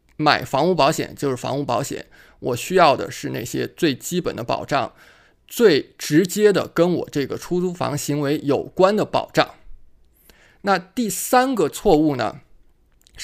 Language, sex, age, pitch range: Chinese, male, 20-39, 145-205 Hz